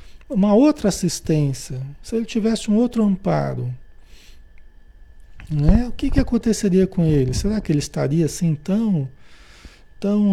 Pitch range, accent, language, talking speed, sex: 135-190 Hz, Brazilian, Portuguese, 135 wpm, male